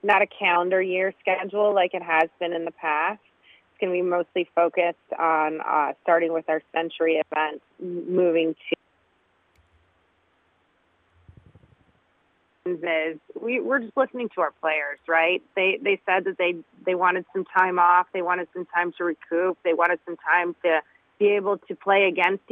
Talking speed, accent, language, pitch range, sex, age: 160 wpm, American, English, 160-185 Hz, female, 30-49